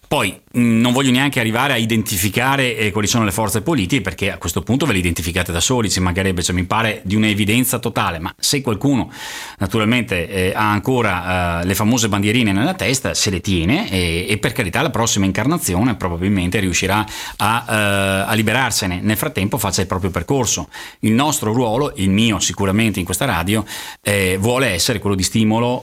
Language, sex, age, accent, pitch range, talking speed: Italian, male, 40-59, native, 95-115 Hz, 180 wpm